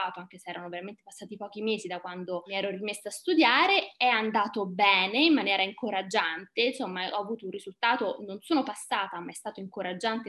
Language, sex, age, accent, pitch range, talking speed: Italian, female, 20-39, native, 195-255 Hz, 185 wpm